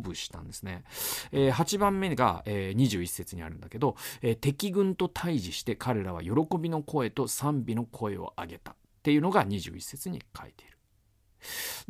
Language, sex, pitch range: Japanese, male, 105-175 Hz